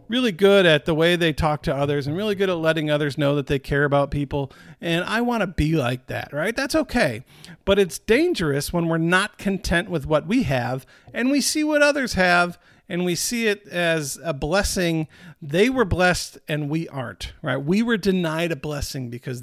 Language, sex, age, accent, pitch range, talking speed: English, male, 50-69, American, 145-200 Hz, 205 wpm